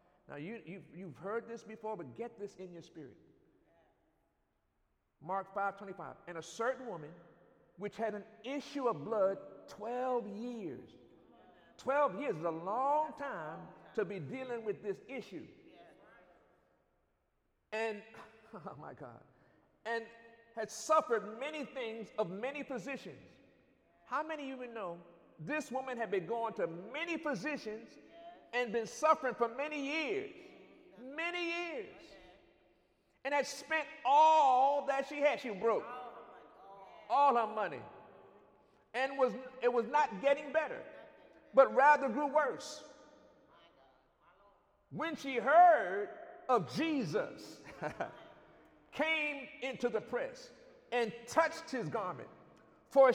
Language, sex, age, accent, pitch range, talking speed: English, male, 50-69, American, 220-300 Hz, 125 wpm